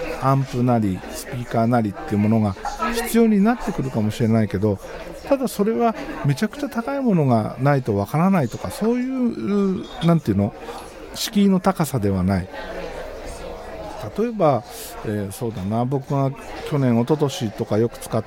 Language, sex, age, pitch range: Japanese, male, 50-69, 110-180 Hz